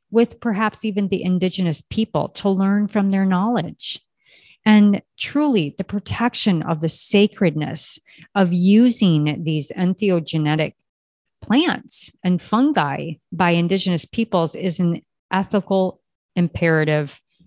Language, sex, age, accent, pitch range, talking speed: English, female, 40-59, American, 155-195 Hz, 110 wpm